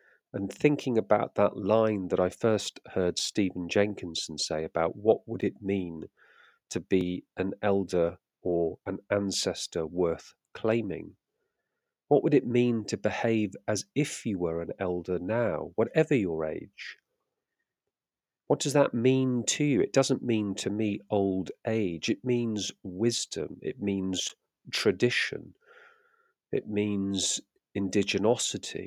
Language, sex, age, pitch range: English, male, 40-59, 95-125 Hz